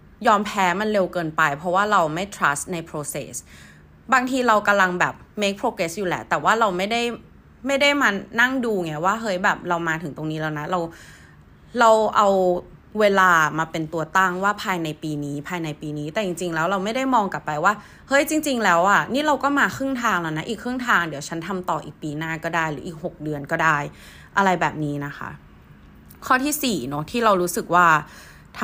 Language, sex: Thai, female